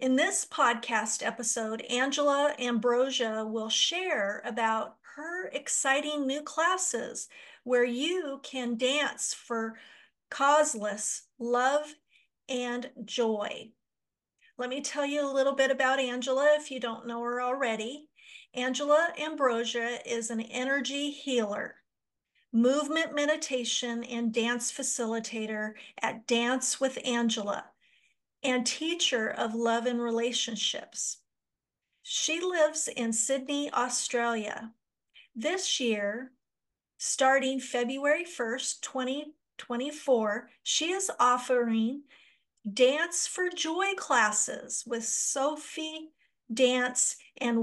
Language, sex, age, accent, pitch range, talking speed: English, female, 50-69, American, 235-290 Hz, 100 wpm